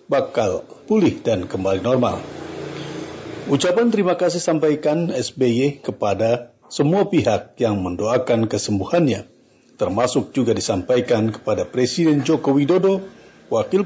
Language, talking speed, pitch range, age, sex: Indonesian, 105 wpm, 115-155 Hz, 50-69, male